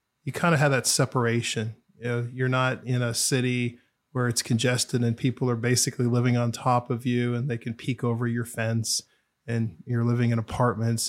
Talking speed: 200 wpm